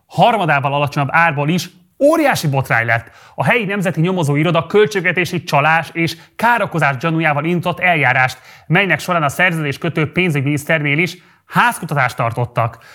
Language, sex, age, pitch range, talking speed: Hungarian, male, 30-49, 155-180 Hz, 125 wpm